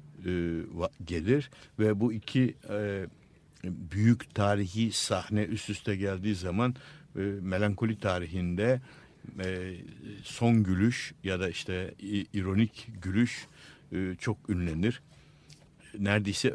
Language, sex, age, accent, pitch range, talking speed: Turkish, male, 60-79, native, 95-125 Hz, 85 wpm